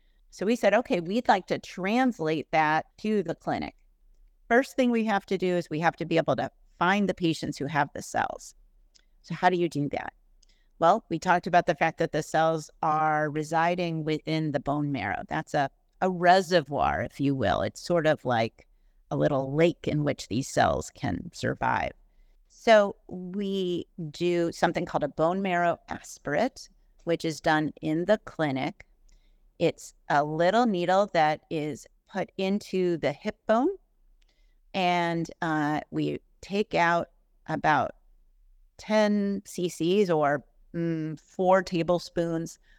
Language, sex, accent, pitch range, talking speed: English, female, American, 155-185 Hz, 155 wpm